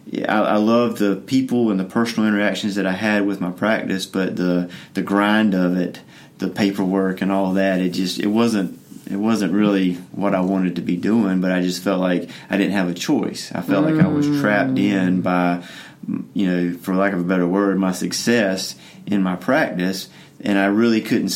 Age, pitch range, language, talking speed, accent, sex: 30-49, 90-100 Hz, English, 210 wpm, American, male